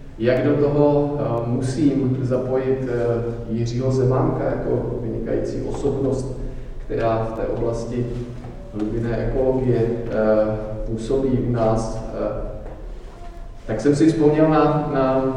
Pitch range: 115-140 Hz